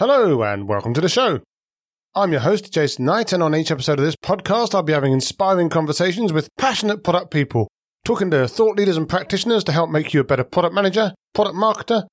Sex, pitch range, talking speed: male, 155-205 Hz, 215 wpm